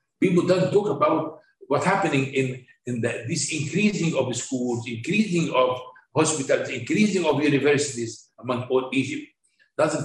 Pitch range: 130-180 Hz